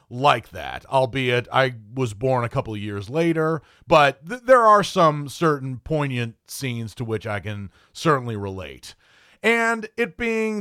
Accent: American